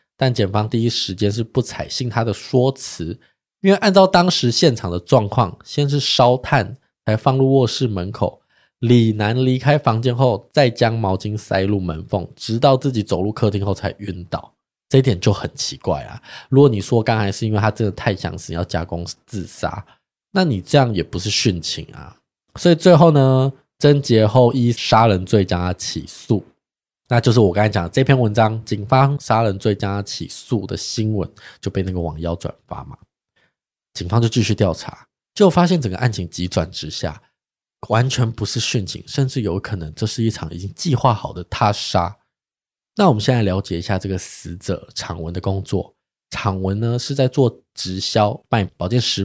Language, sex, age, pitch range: Chinese, male, 20-39, 95-130 Hz